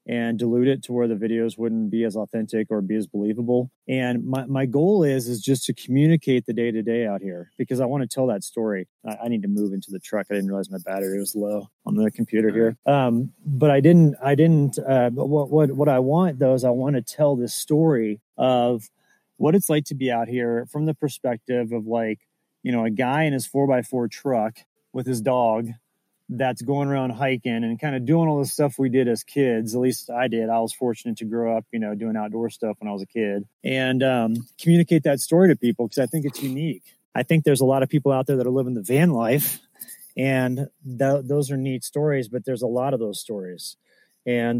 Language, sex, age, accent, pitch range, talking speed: English, male, 30-49, American, 115-140 Hz, 240 wpm